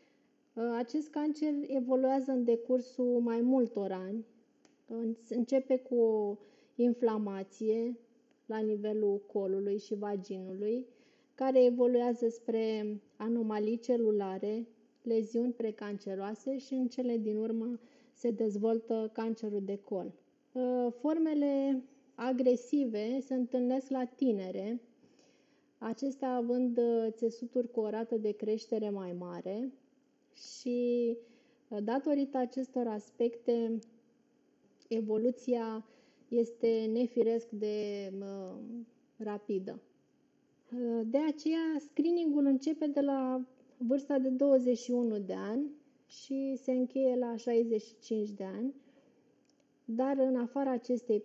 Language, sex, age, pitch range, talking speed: Romanian, female, 20-39, 215-255 Hz, 95 wpm